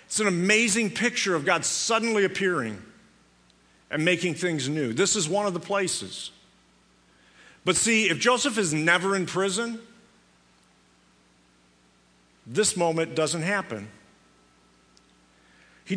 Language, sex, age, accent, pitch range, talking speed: English, male, 50-69, American, 140-205 Hz, 115 wpm